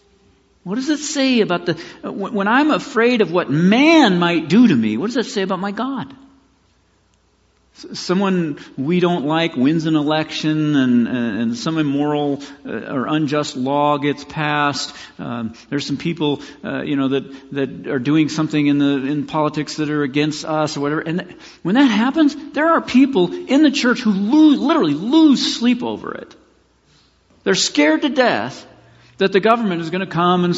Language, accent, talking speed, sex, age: English, American, 180 wpm, male, 50-69